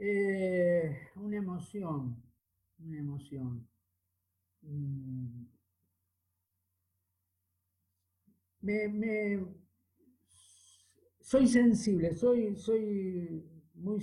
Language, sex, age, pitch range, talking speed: Spanish, male, 50-69, 125-165 Hz, 45 wpm